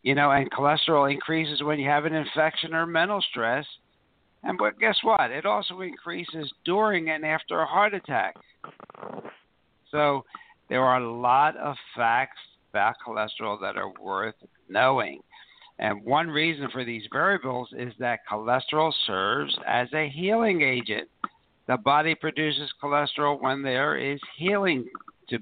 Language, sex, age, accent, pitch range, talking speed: English, male, 60-79, American, 125-160 Hz, 145 wpm